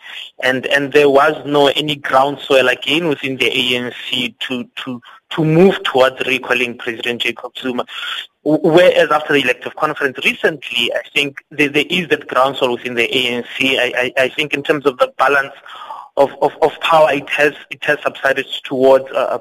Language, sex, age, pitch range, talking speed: English, male, 20-39, 130-160 Hz, 170 wpm